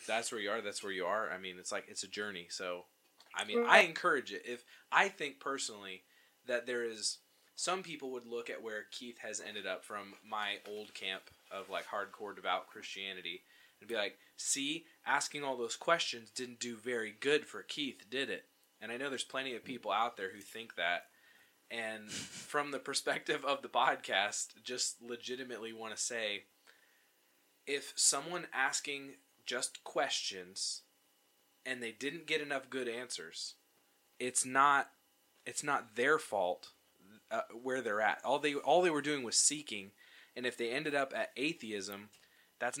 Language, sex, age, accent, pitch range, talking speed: English, male, 20-39, American, 105-140 Hz, 175 wpm